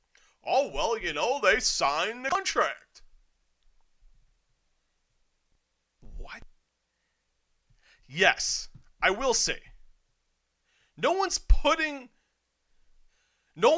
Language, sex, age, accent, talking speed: English, male, 40-59, American, 75 wpm